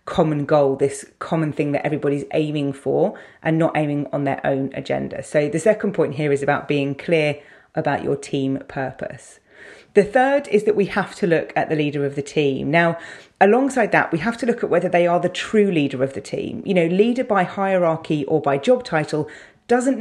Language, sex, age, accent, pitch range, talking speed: English, female, 30-49, British, 145-180 Hz, 210 wpm